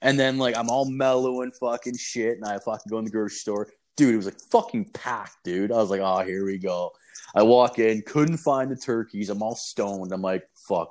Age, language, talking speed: 20-39, English, 240 wpm